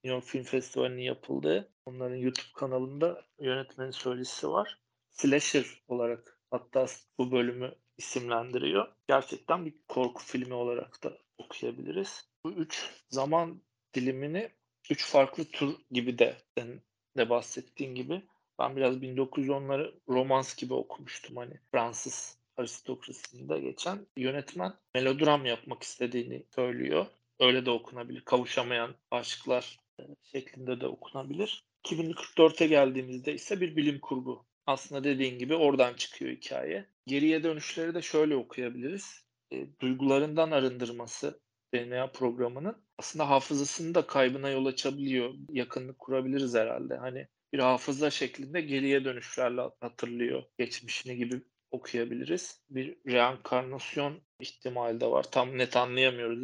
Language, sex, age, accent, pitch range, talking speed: Turkish, male, 40-59, native, 125-145 Hz, 115 wpm